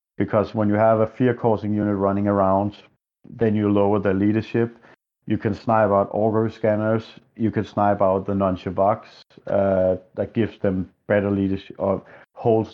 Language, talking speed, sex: English, 165 wpm, male